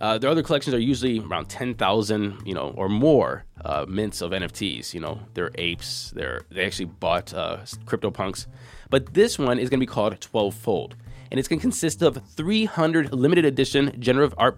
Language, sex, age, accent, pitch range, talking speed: English, male, 20-39, American, 110-140 Hz, 195 wpm